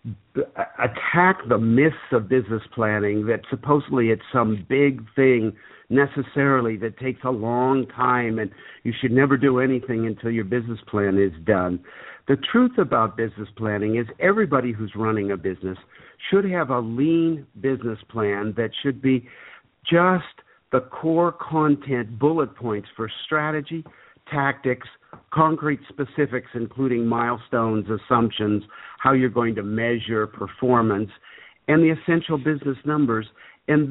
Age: 50-69